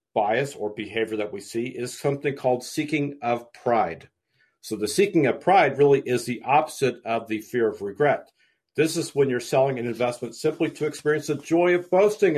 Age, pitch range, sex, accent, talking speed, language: 50-69, 120-155 Hz, male, American, 195 wpm, English